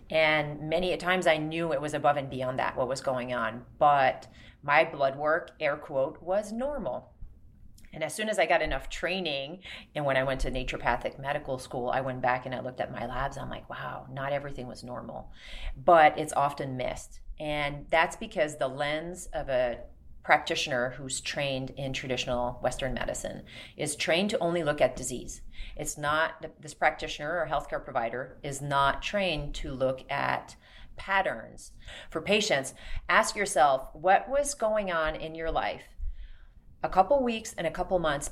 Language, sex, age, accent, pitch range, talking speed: English, female, 30-49, American, 135-180 Hz, 175 wpm